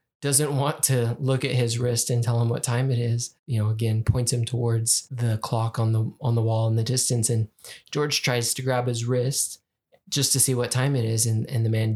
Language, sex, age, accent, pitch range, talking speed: English, male, 20-39, American, 115-130 Hz, 240 wpm